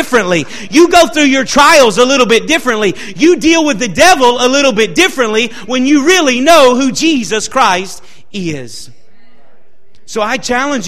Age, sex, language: 40-59, male, English